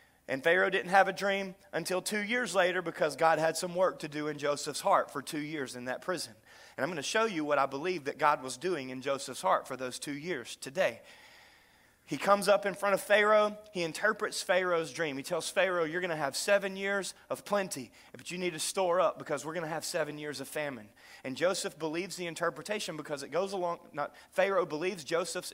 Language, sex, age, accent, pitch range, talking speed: English, male, 30-49, American, 155-200 Hz, 225 wpm